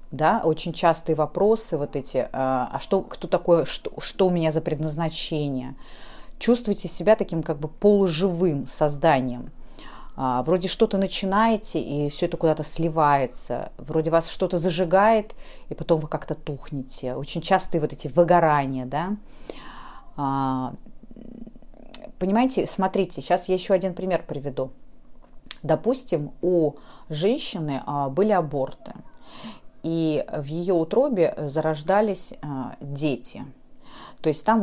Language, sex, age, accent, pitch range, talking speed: Russian, female, 30-49, native, 145-190 Hz, 120 wpm